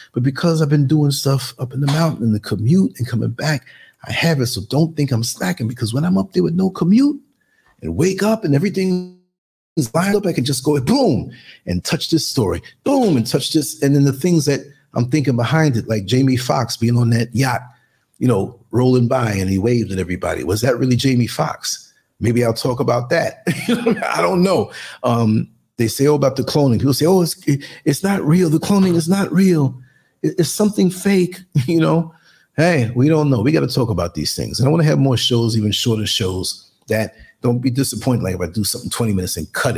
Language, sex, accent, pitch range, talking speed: English, male, American, 105-155 Hz, 225 wpm